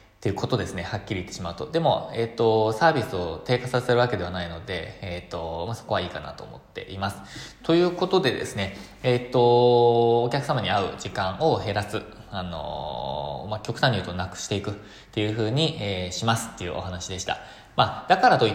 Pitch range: 95-130 Hz